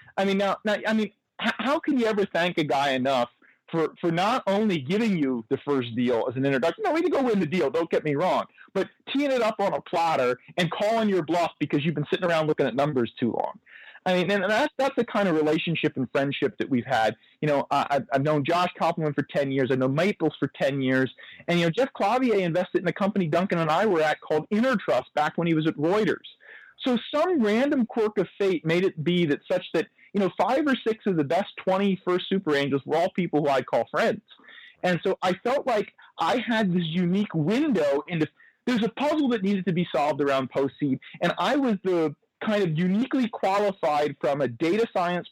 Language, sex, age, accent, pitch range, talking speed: English, male, 40-59, American, 150-215 Hz, 230 wpm